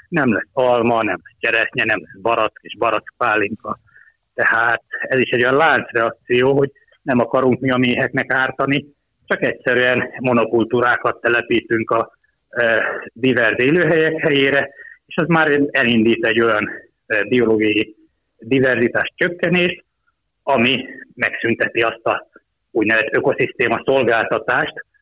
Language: Hungarian